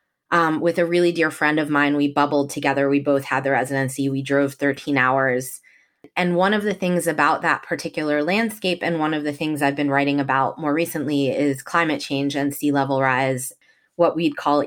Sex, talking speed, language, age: female, 205 wpm, English, 20-39